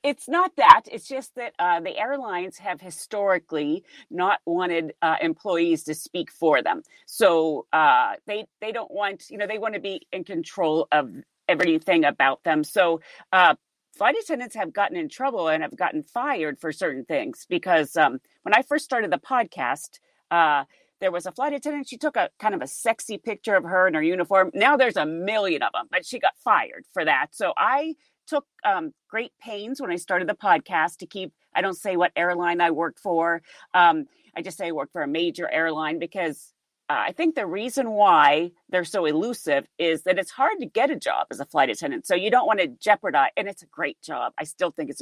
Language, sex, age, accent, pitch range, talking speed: English, female, 40-59, American, 170-260 Hz, 215 wpm